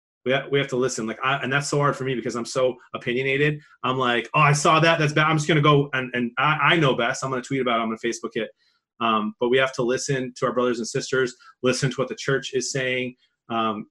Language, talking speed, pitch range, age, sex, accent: English, 275 wpm, 120-140 Hz, 30-49, male, American